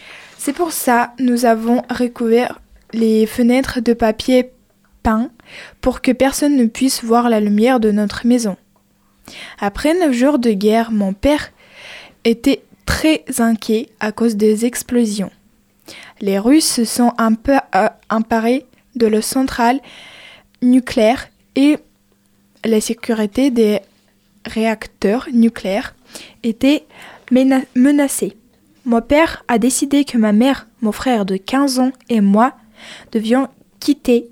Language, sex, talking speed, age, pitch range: French, female, 130 wpm, 20-39, 220-260 Hz